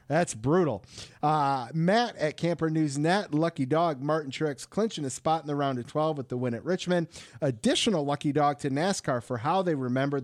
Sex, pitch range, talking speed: male, 125-155 Hz, 200 wpm